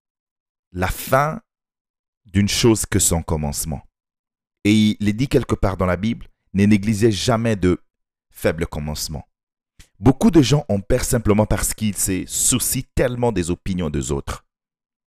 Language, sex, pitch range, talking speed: English, male, 90-120 Hz, 145 wpm